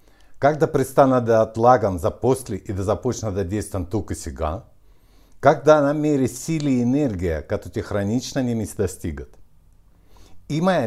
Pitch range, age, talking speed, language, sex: 95-130 Hz, 60-79, 135 wpm, Bulgarian, male